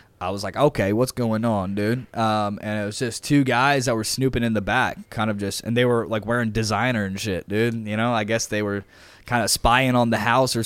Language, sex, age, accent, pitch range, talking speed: English, male, 20-39, American, 105-120 Hz, 260 wpm